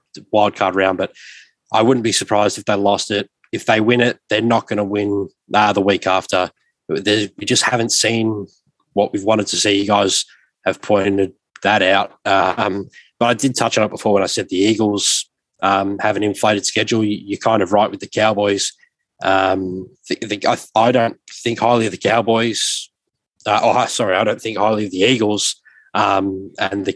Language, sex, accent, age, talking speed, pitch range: English, male, Australian, 20-39, 185 wpm, 95-110 Hz